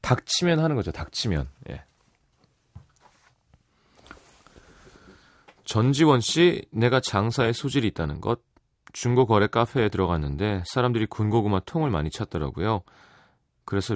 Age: 30-49